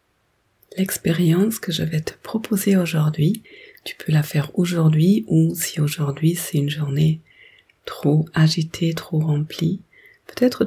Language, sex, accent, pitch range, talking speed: French, female, French, 150-175 Hz, 130 wpm